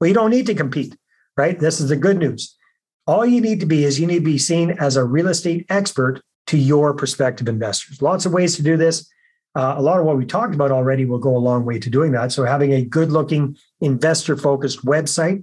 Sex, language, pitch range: male, English, 130-165 Hz